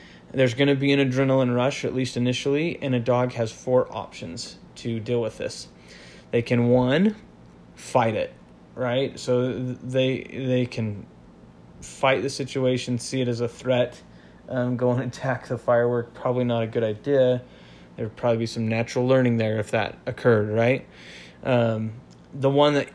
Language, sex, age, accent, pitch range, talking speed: English, male, 20-39, American, 110-130 Hz, 170 wpm